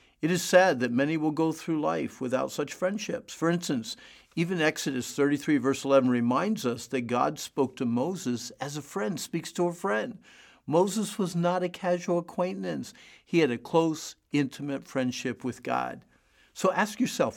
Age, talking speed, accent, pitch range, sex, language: 50-69, 175 wpm, American, 125-165 Hz, male, English